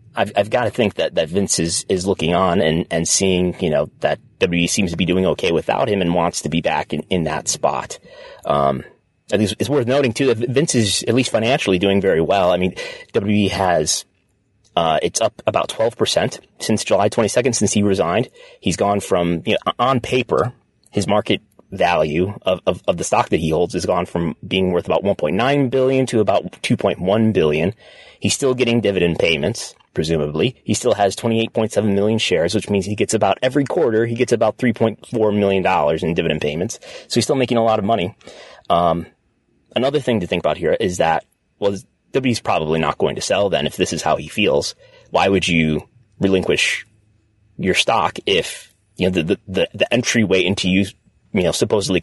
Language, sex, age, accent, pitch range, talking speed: English, male, 30-49, American, 95-120 Hz, 210 wpm